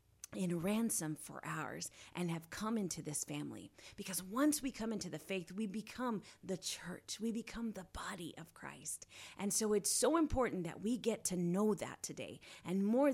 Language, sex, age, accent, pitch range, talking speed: English, female, 30-49, American, 170-215 Hz, 185 wpm